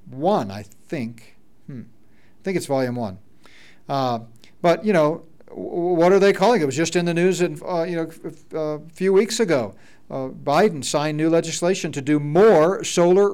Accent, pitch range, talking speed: American, 140-200 Hz, 200 wpm